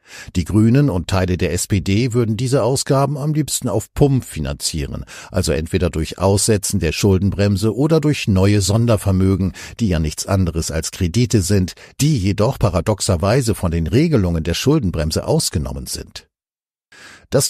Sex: male